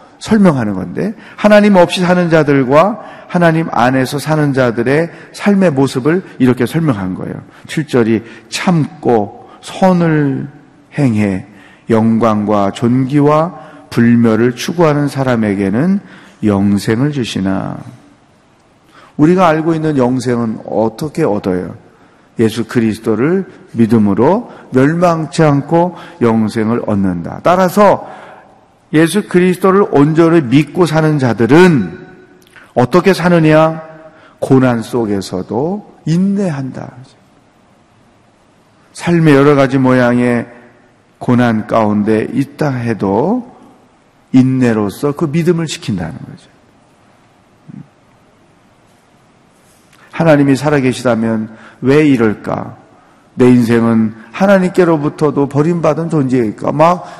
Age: 40-59